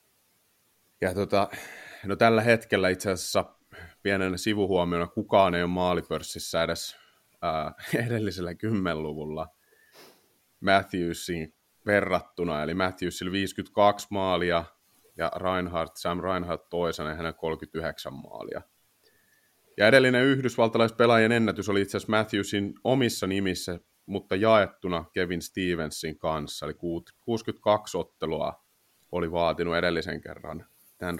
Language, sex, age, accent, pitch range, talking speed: Finnish, male, 30-49, native, 85-110 Hz, 100 wpm